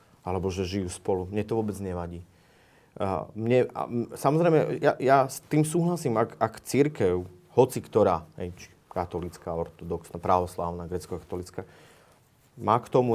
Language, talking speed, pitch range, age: Slovak, 130 wpm, 105-150 Hz, 30-49